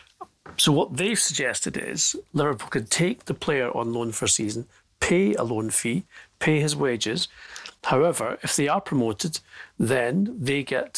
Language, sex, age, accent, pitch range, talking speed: English, male, 40-59, British, 115-155 Hz, 165 wpm